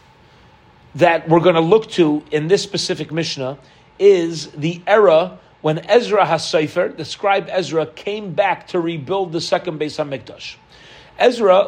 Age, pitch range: 40-59, 155-205 Hz